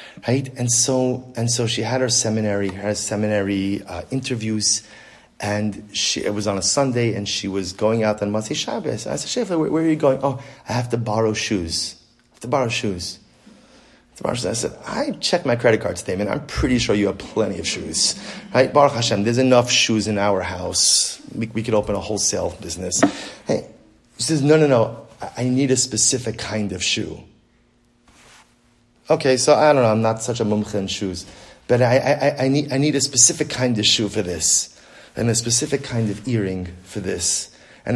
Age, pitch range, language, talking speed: 30-49, 105-130 Hz, English, 200 wpm